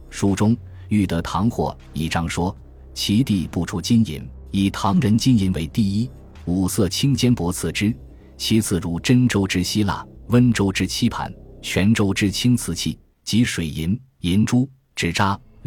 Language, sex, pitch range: Chinese, male, 85-115 Hz